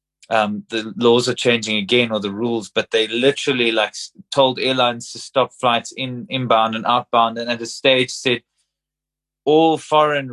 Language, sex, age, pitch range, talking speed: English, male, 30-49, 110-135 Hz, 170 wpm